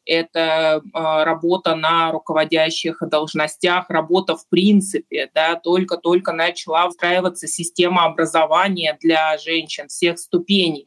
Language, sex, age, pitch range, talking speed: Russian, male, 20-39, 165-205 Hz, 100 wpm